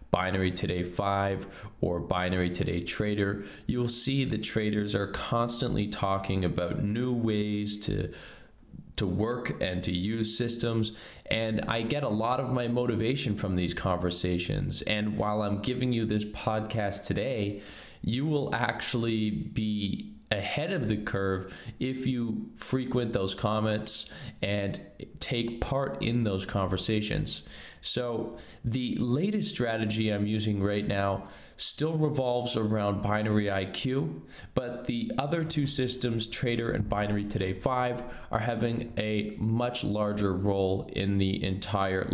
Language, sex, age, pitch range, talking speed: English, male, 20-39, 100-120 Hz, 135 wpm